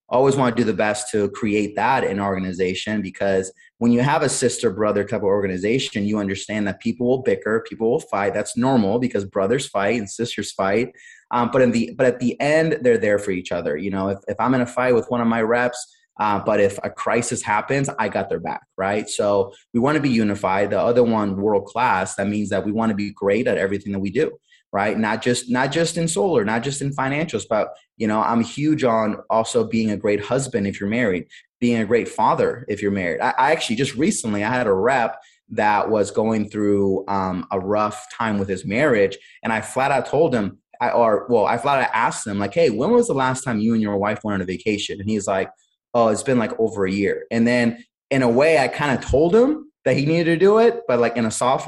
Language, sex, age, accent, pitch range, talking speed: English, male, 30-49, American, 100-130 Hz, 245 wpm